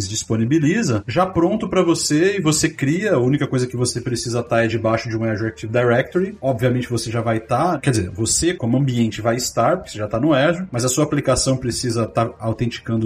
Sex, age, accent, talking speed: male, 30-49, Brazilian, 210 wpm